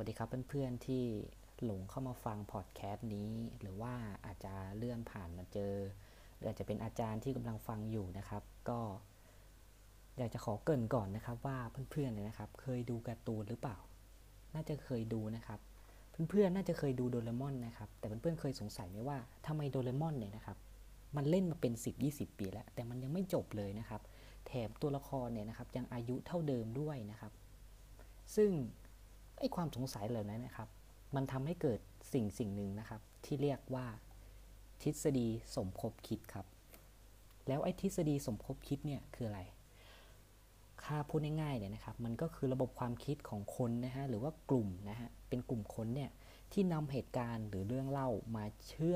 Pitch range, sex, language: 105-135 Hz, female, Thai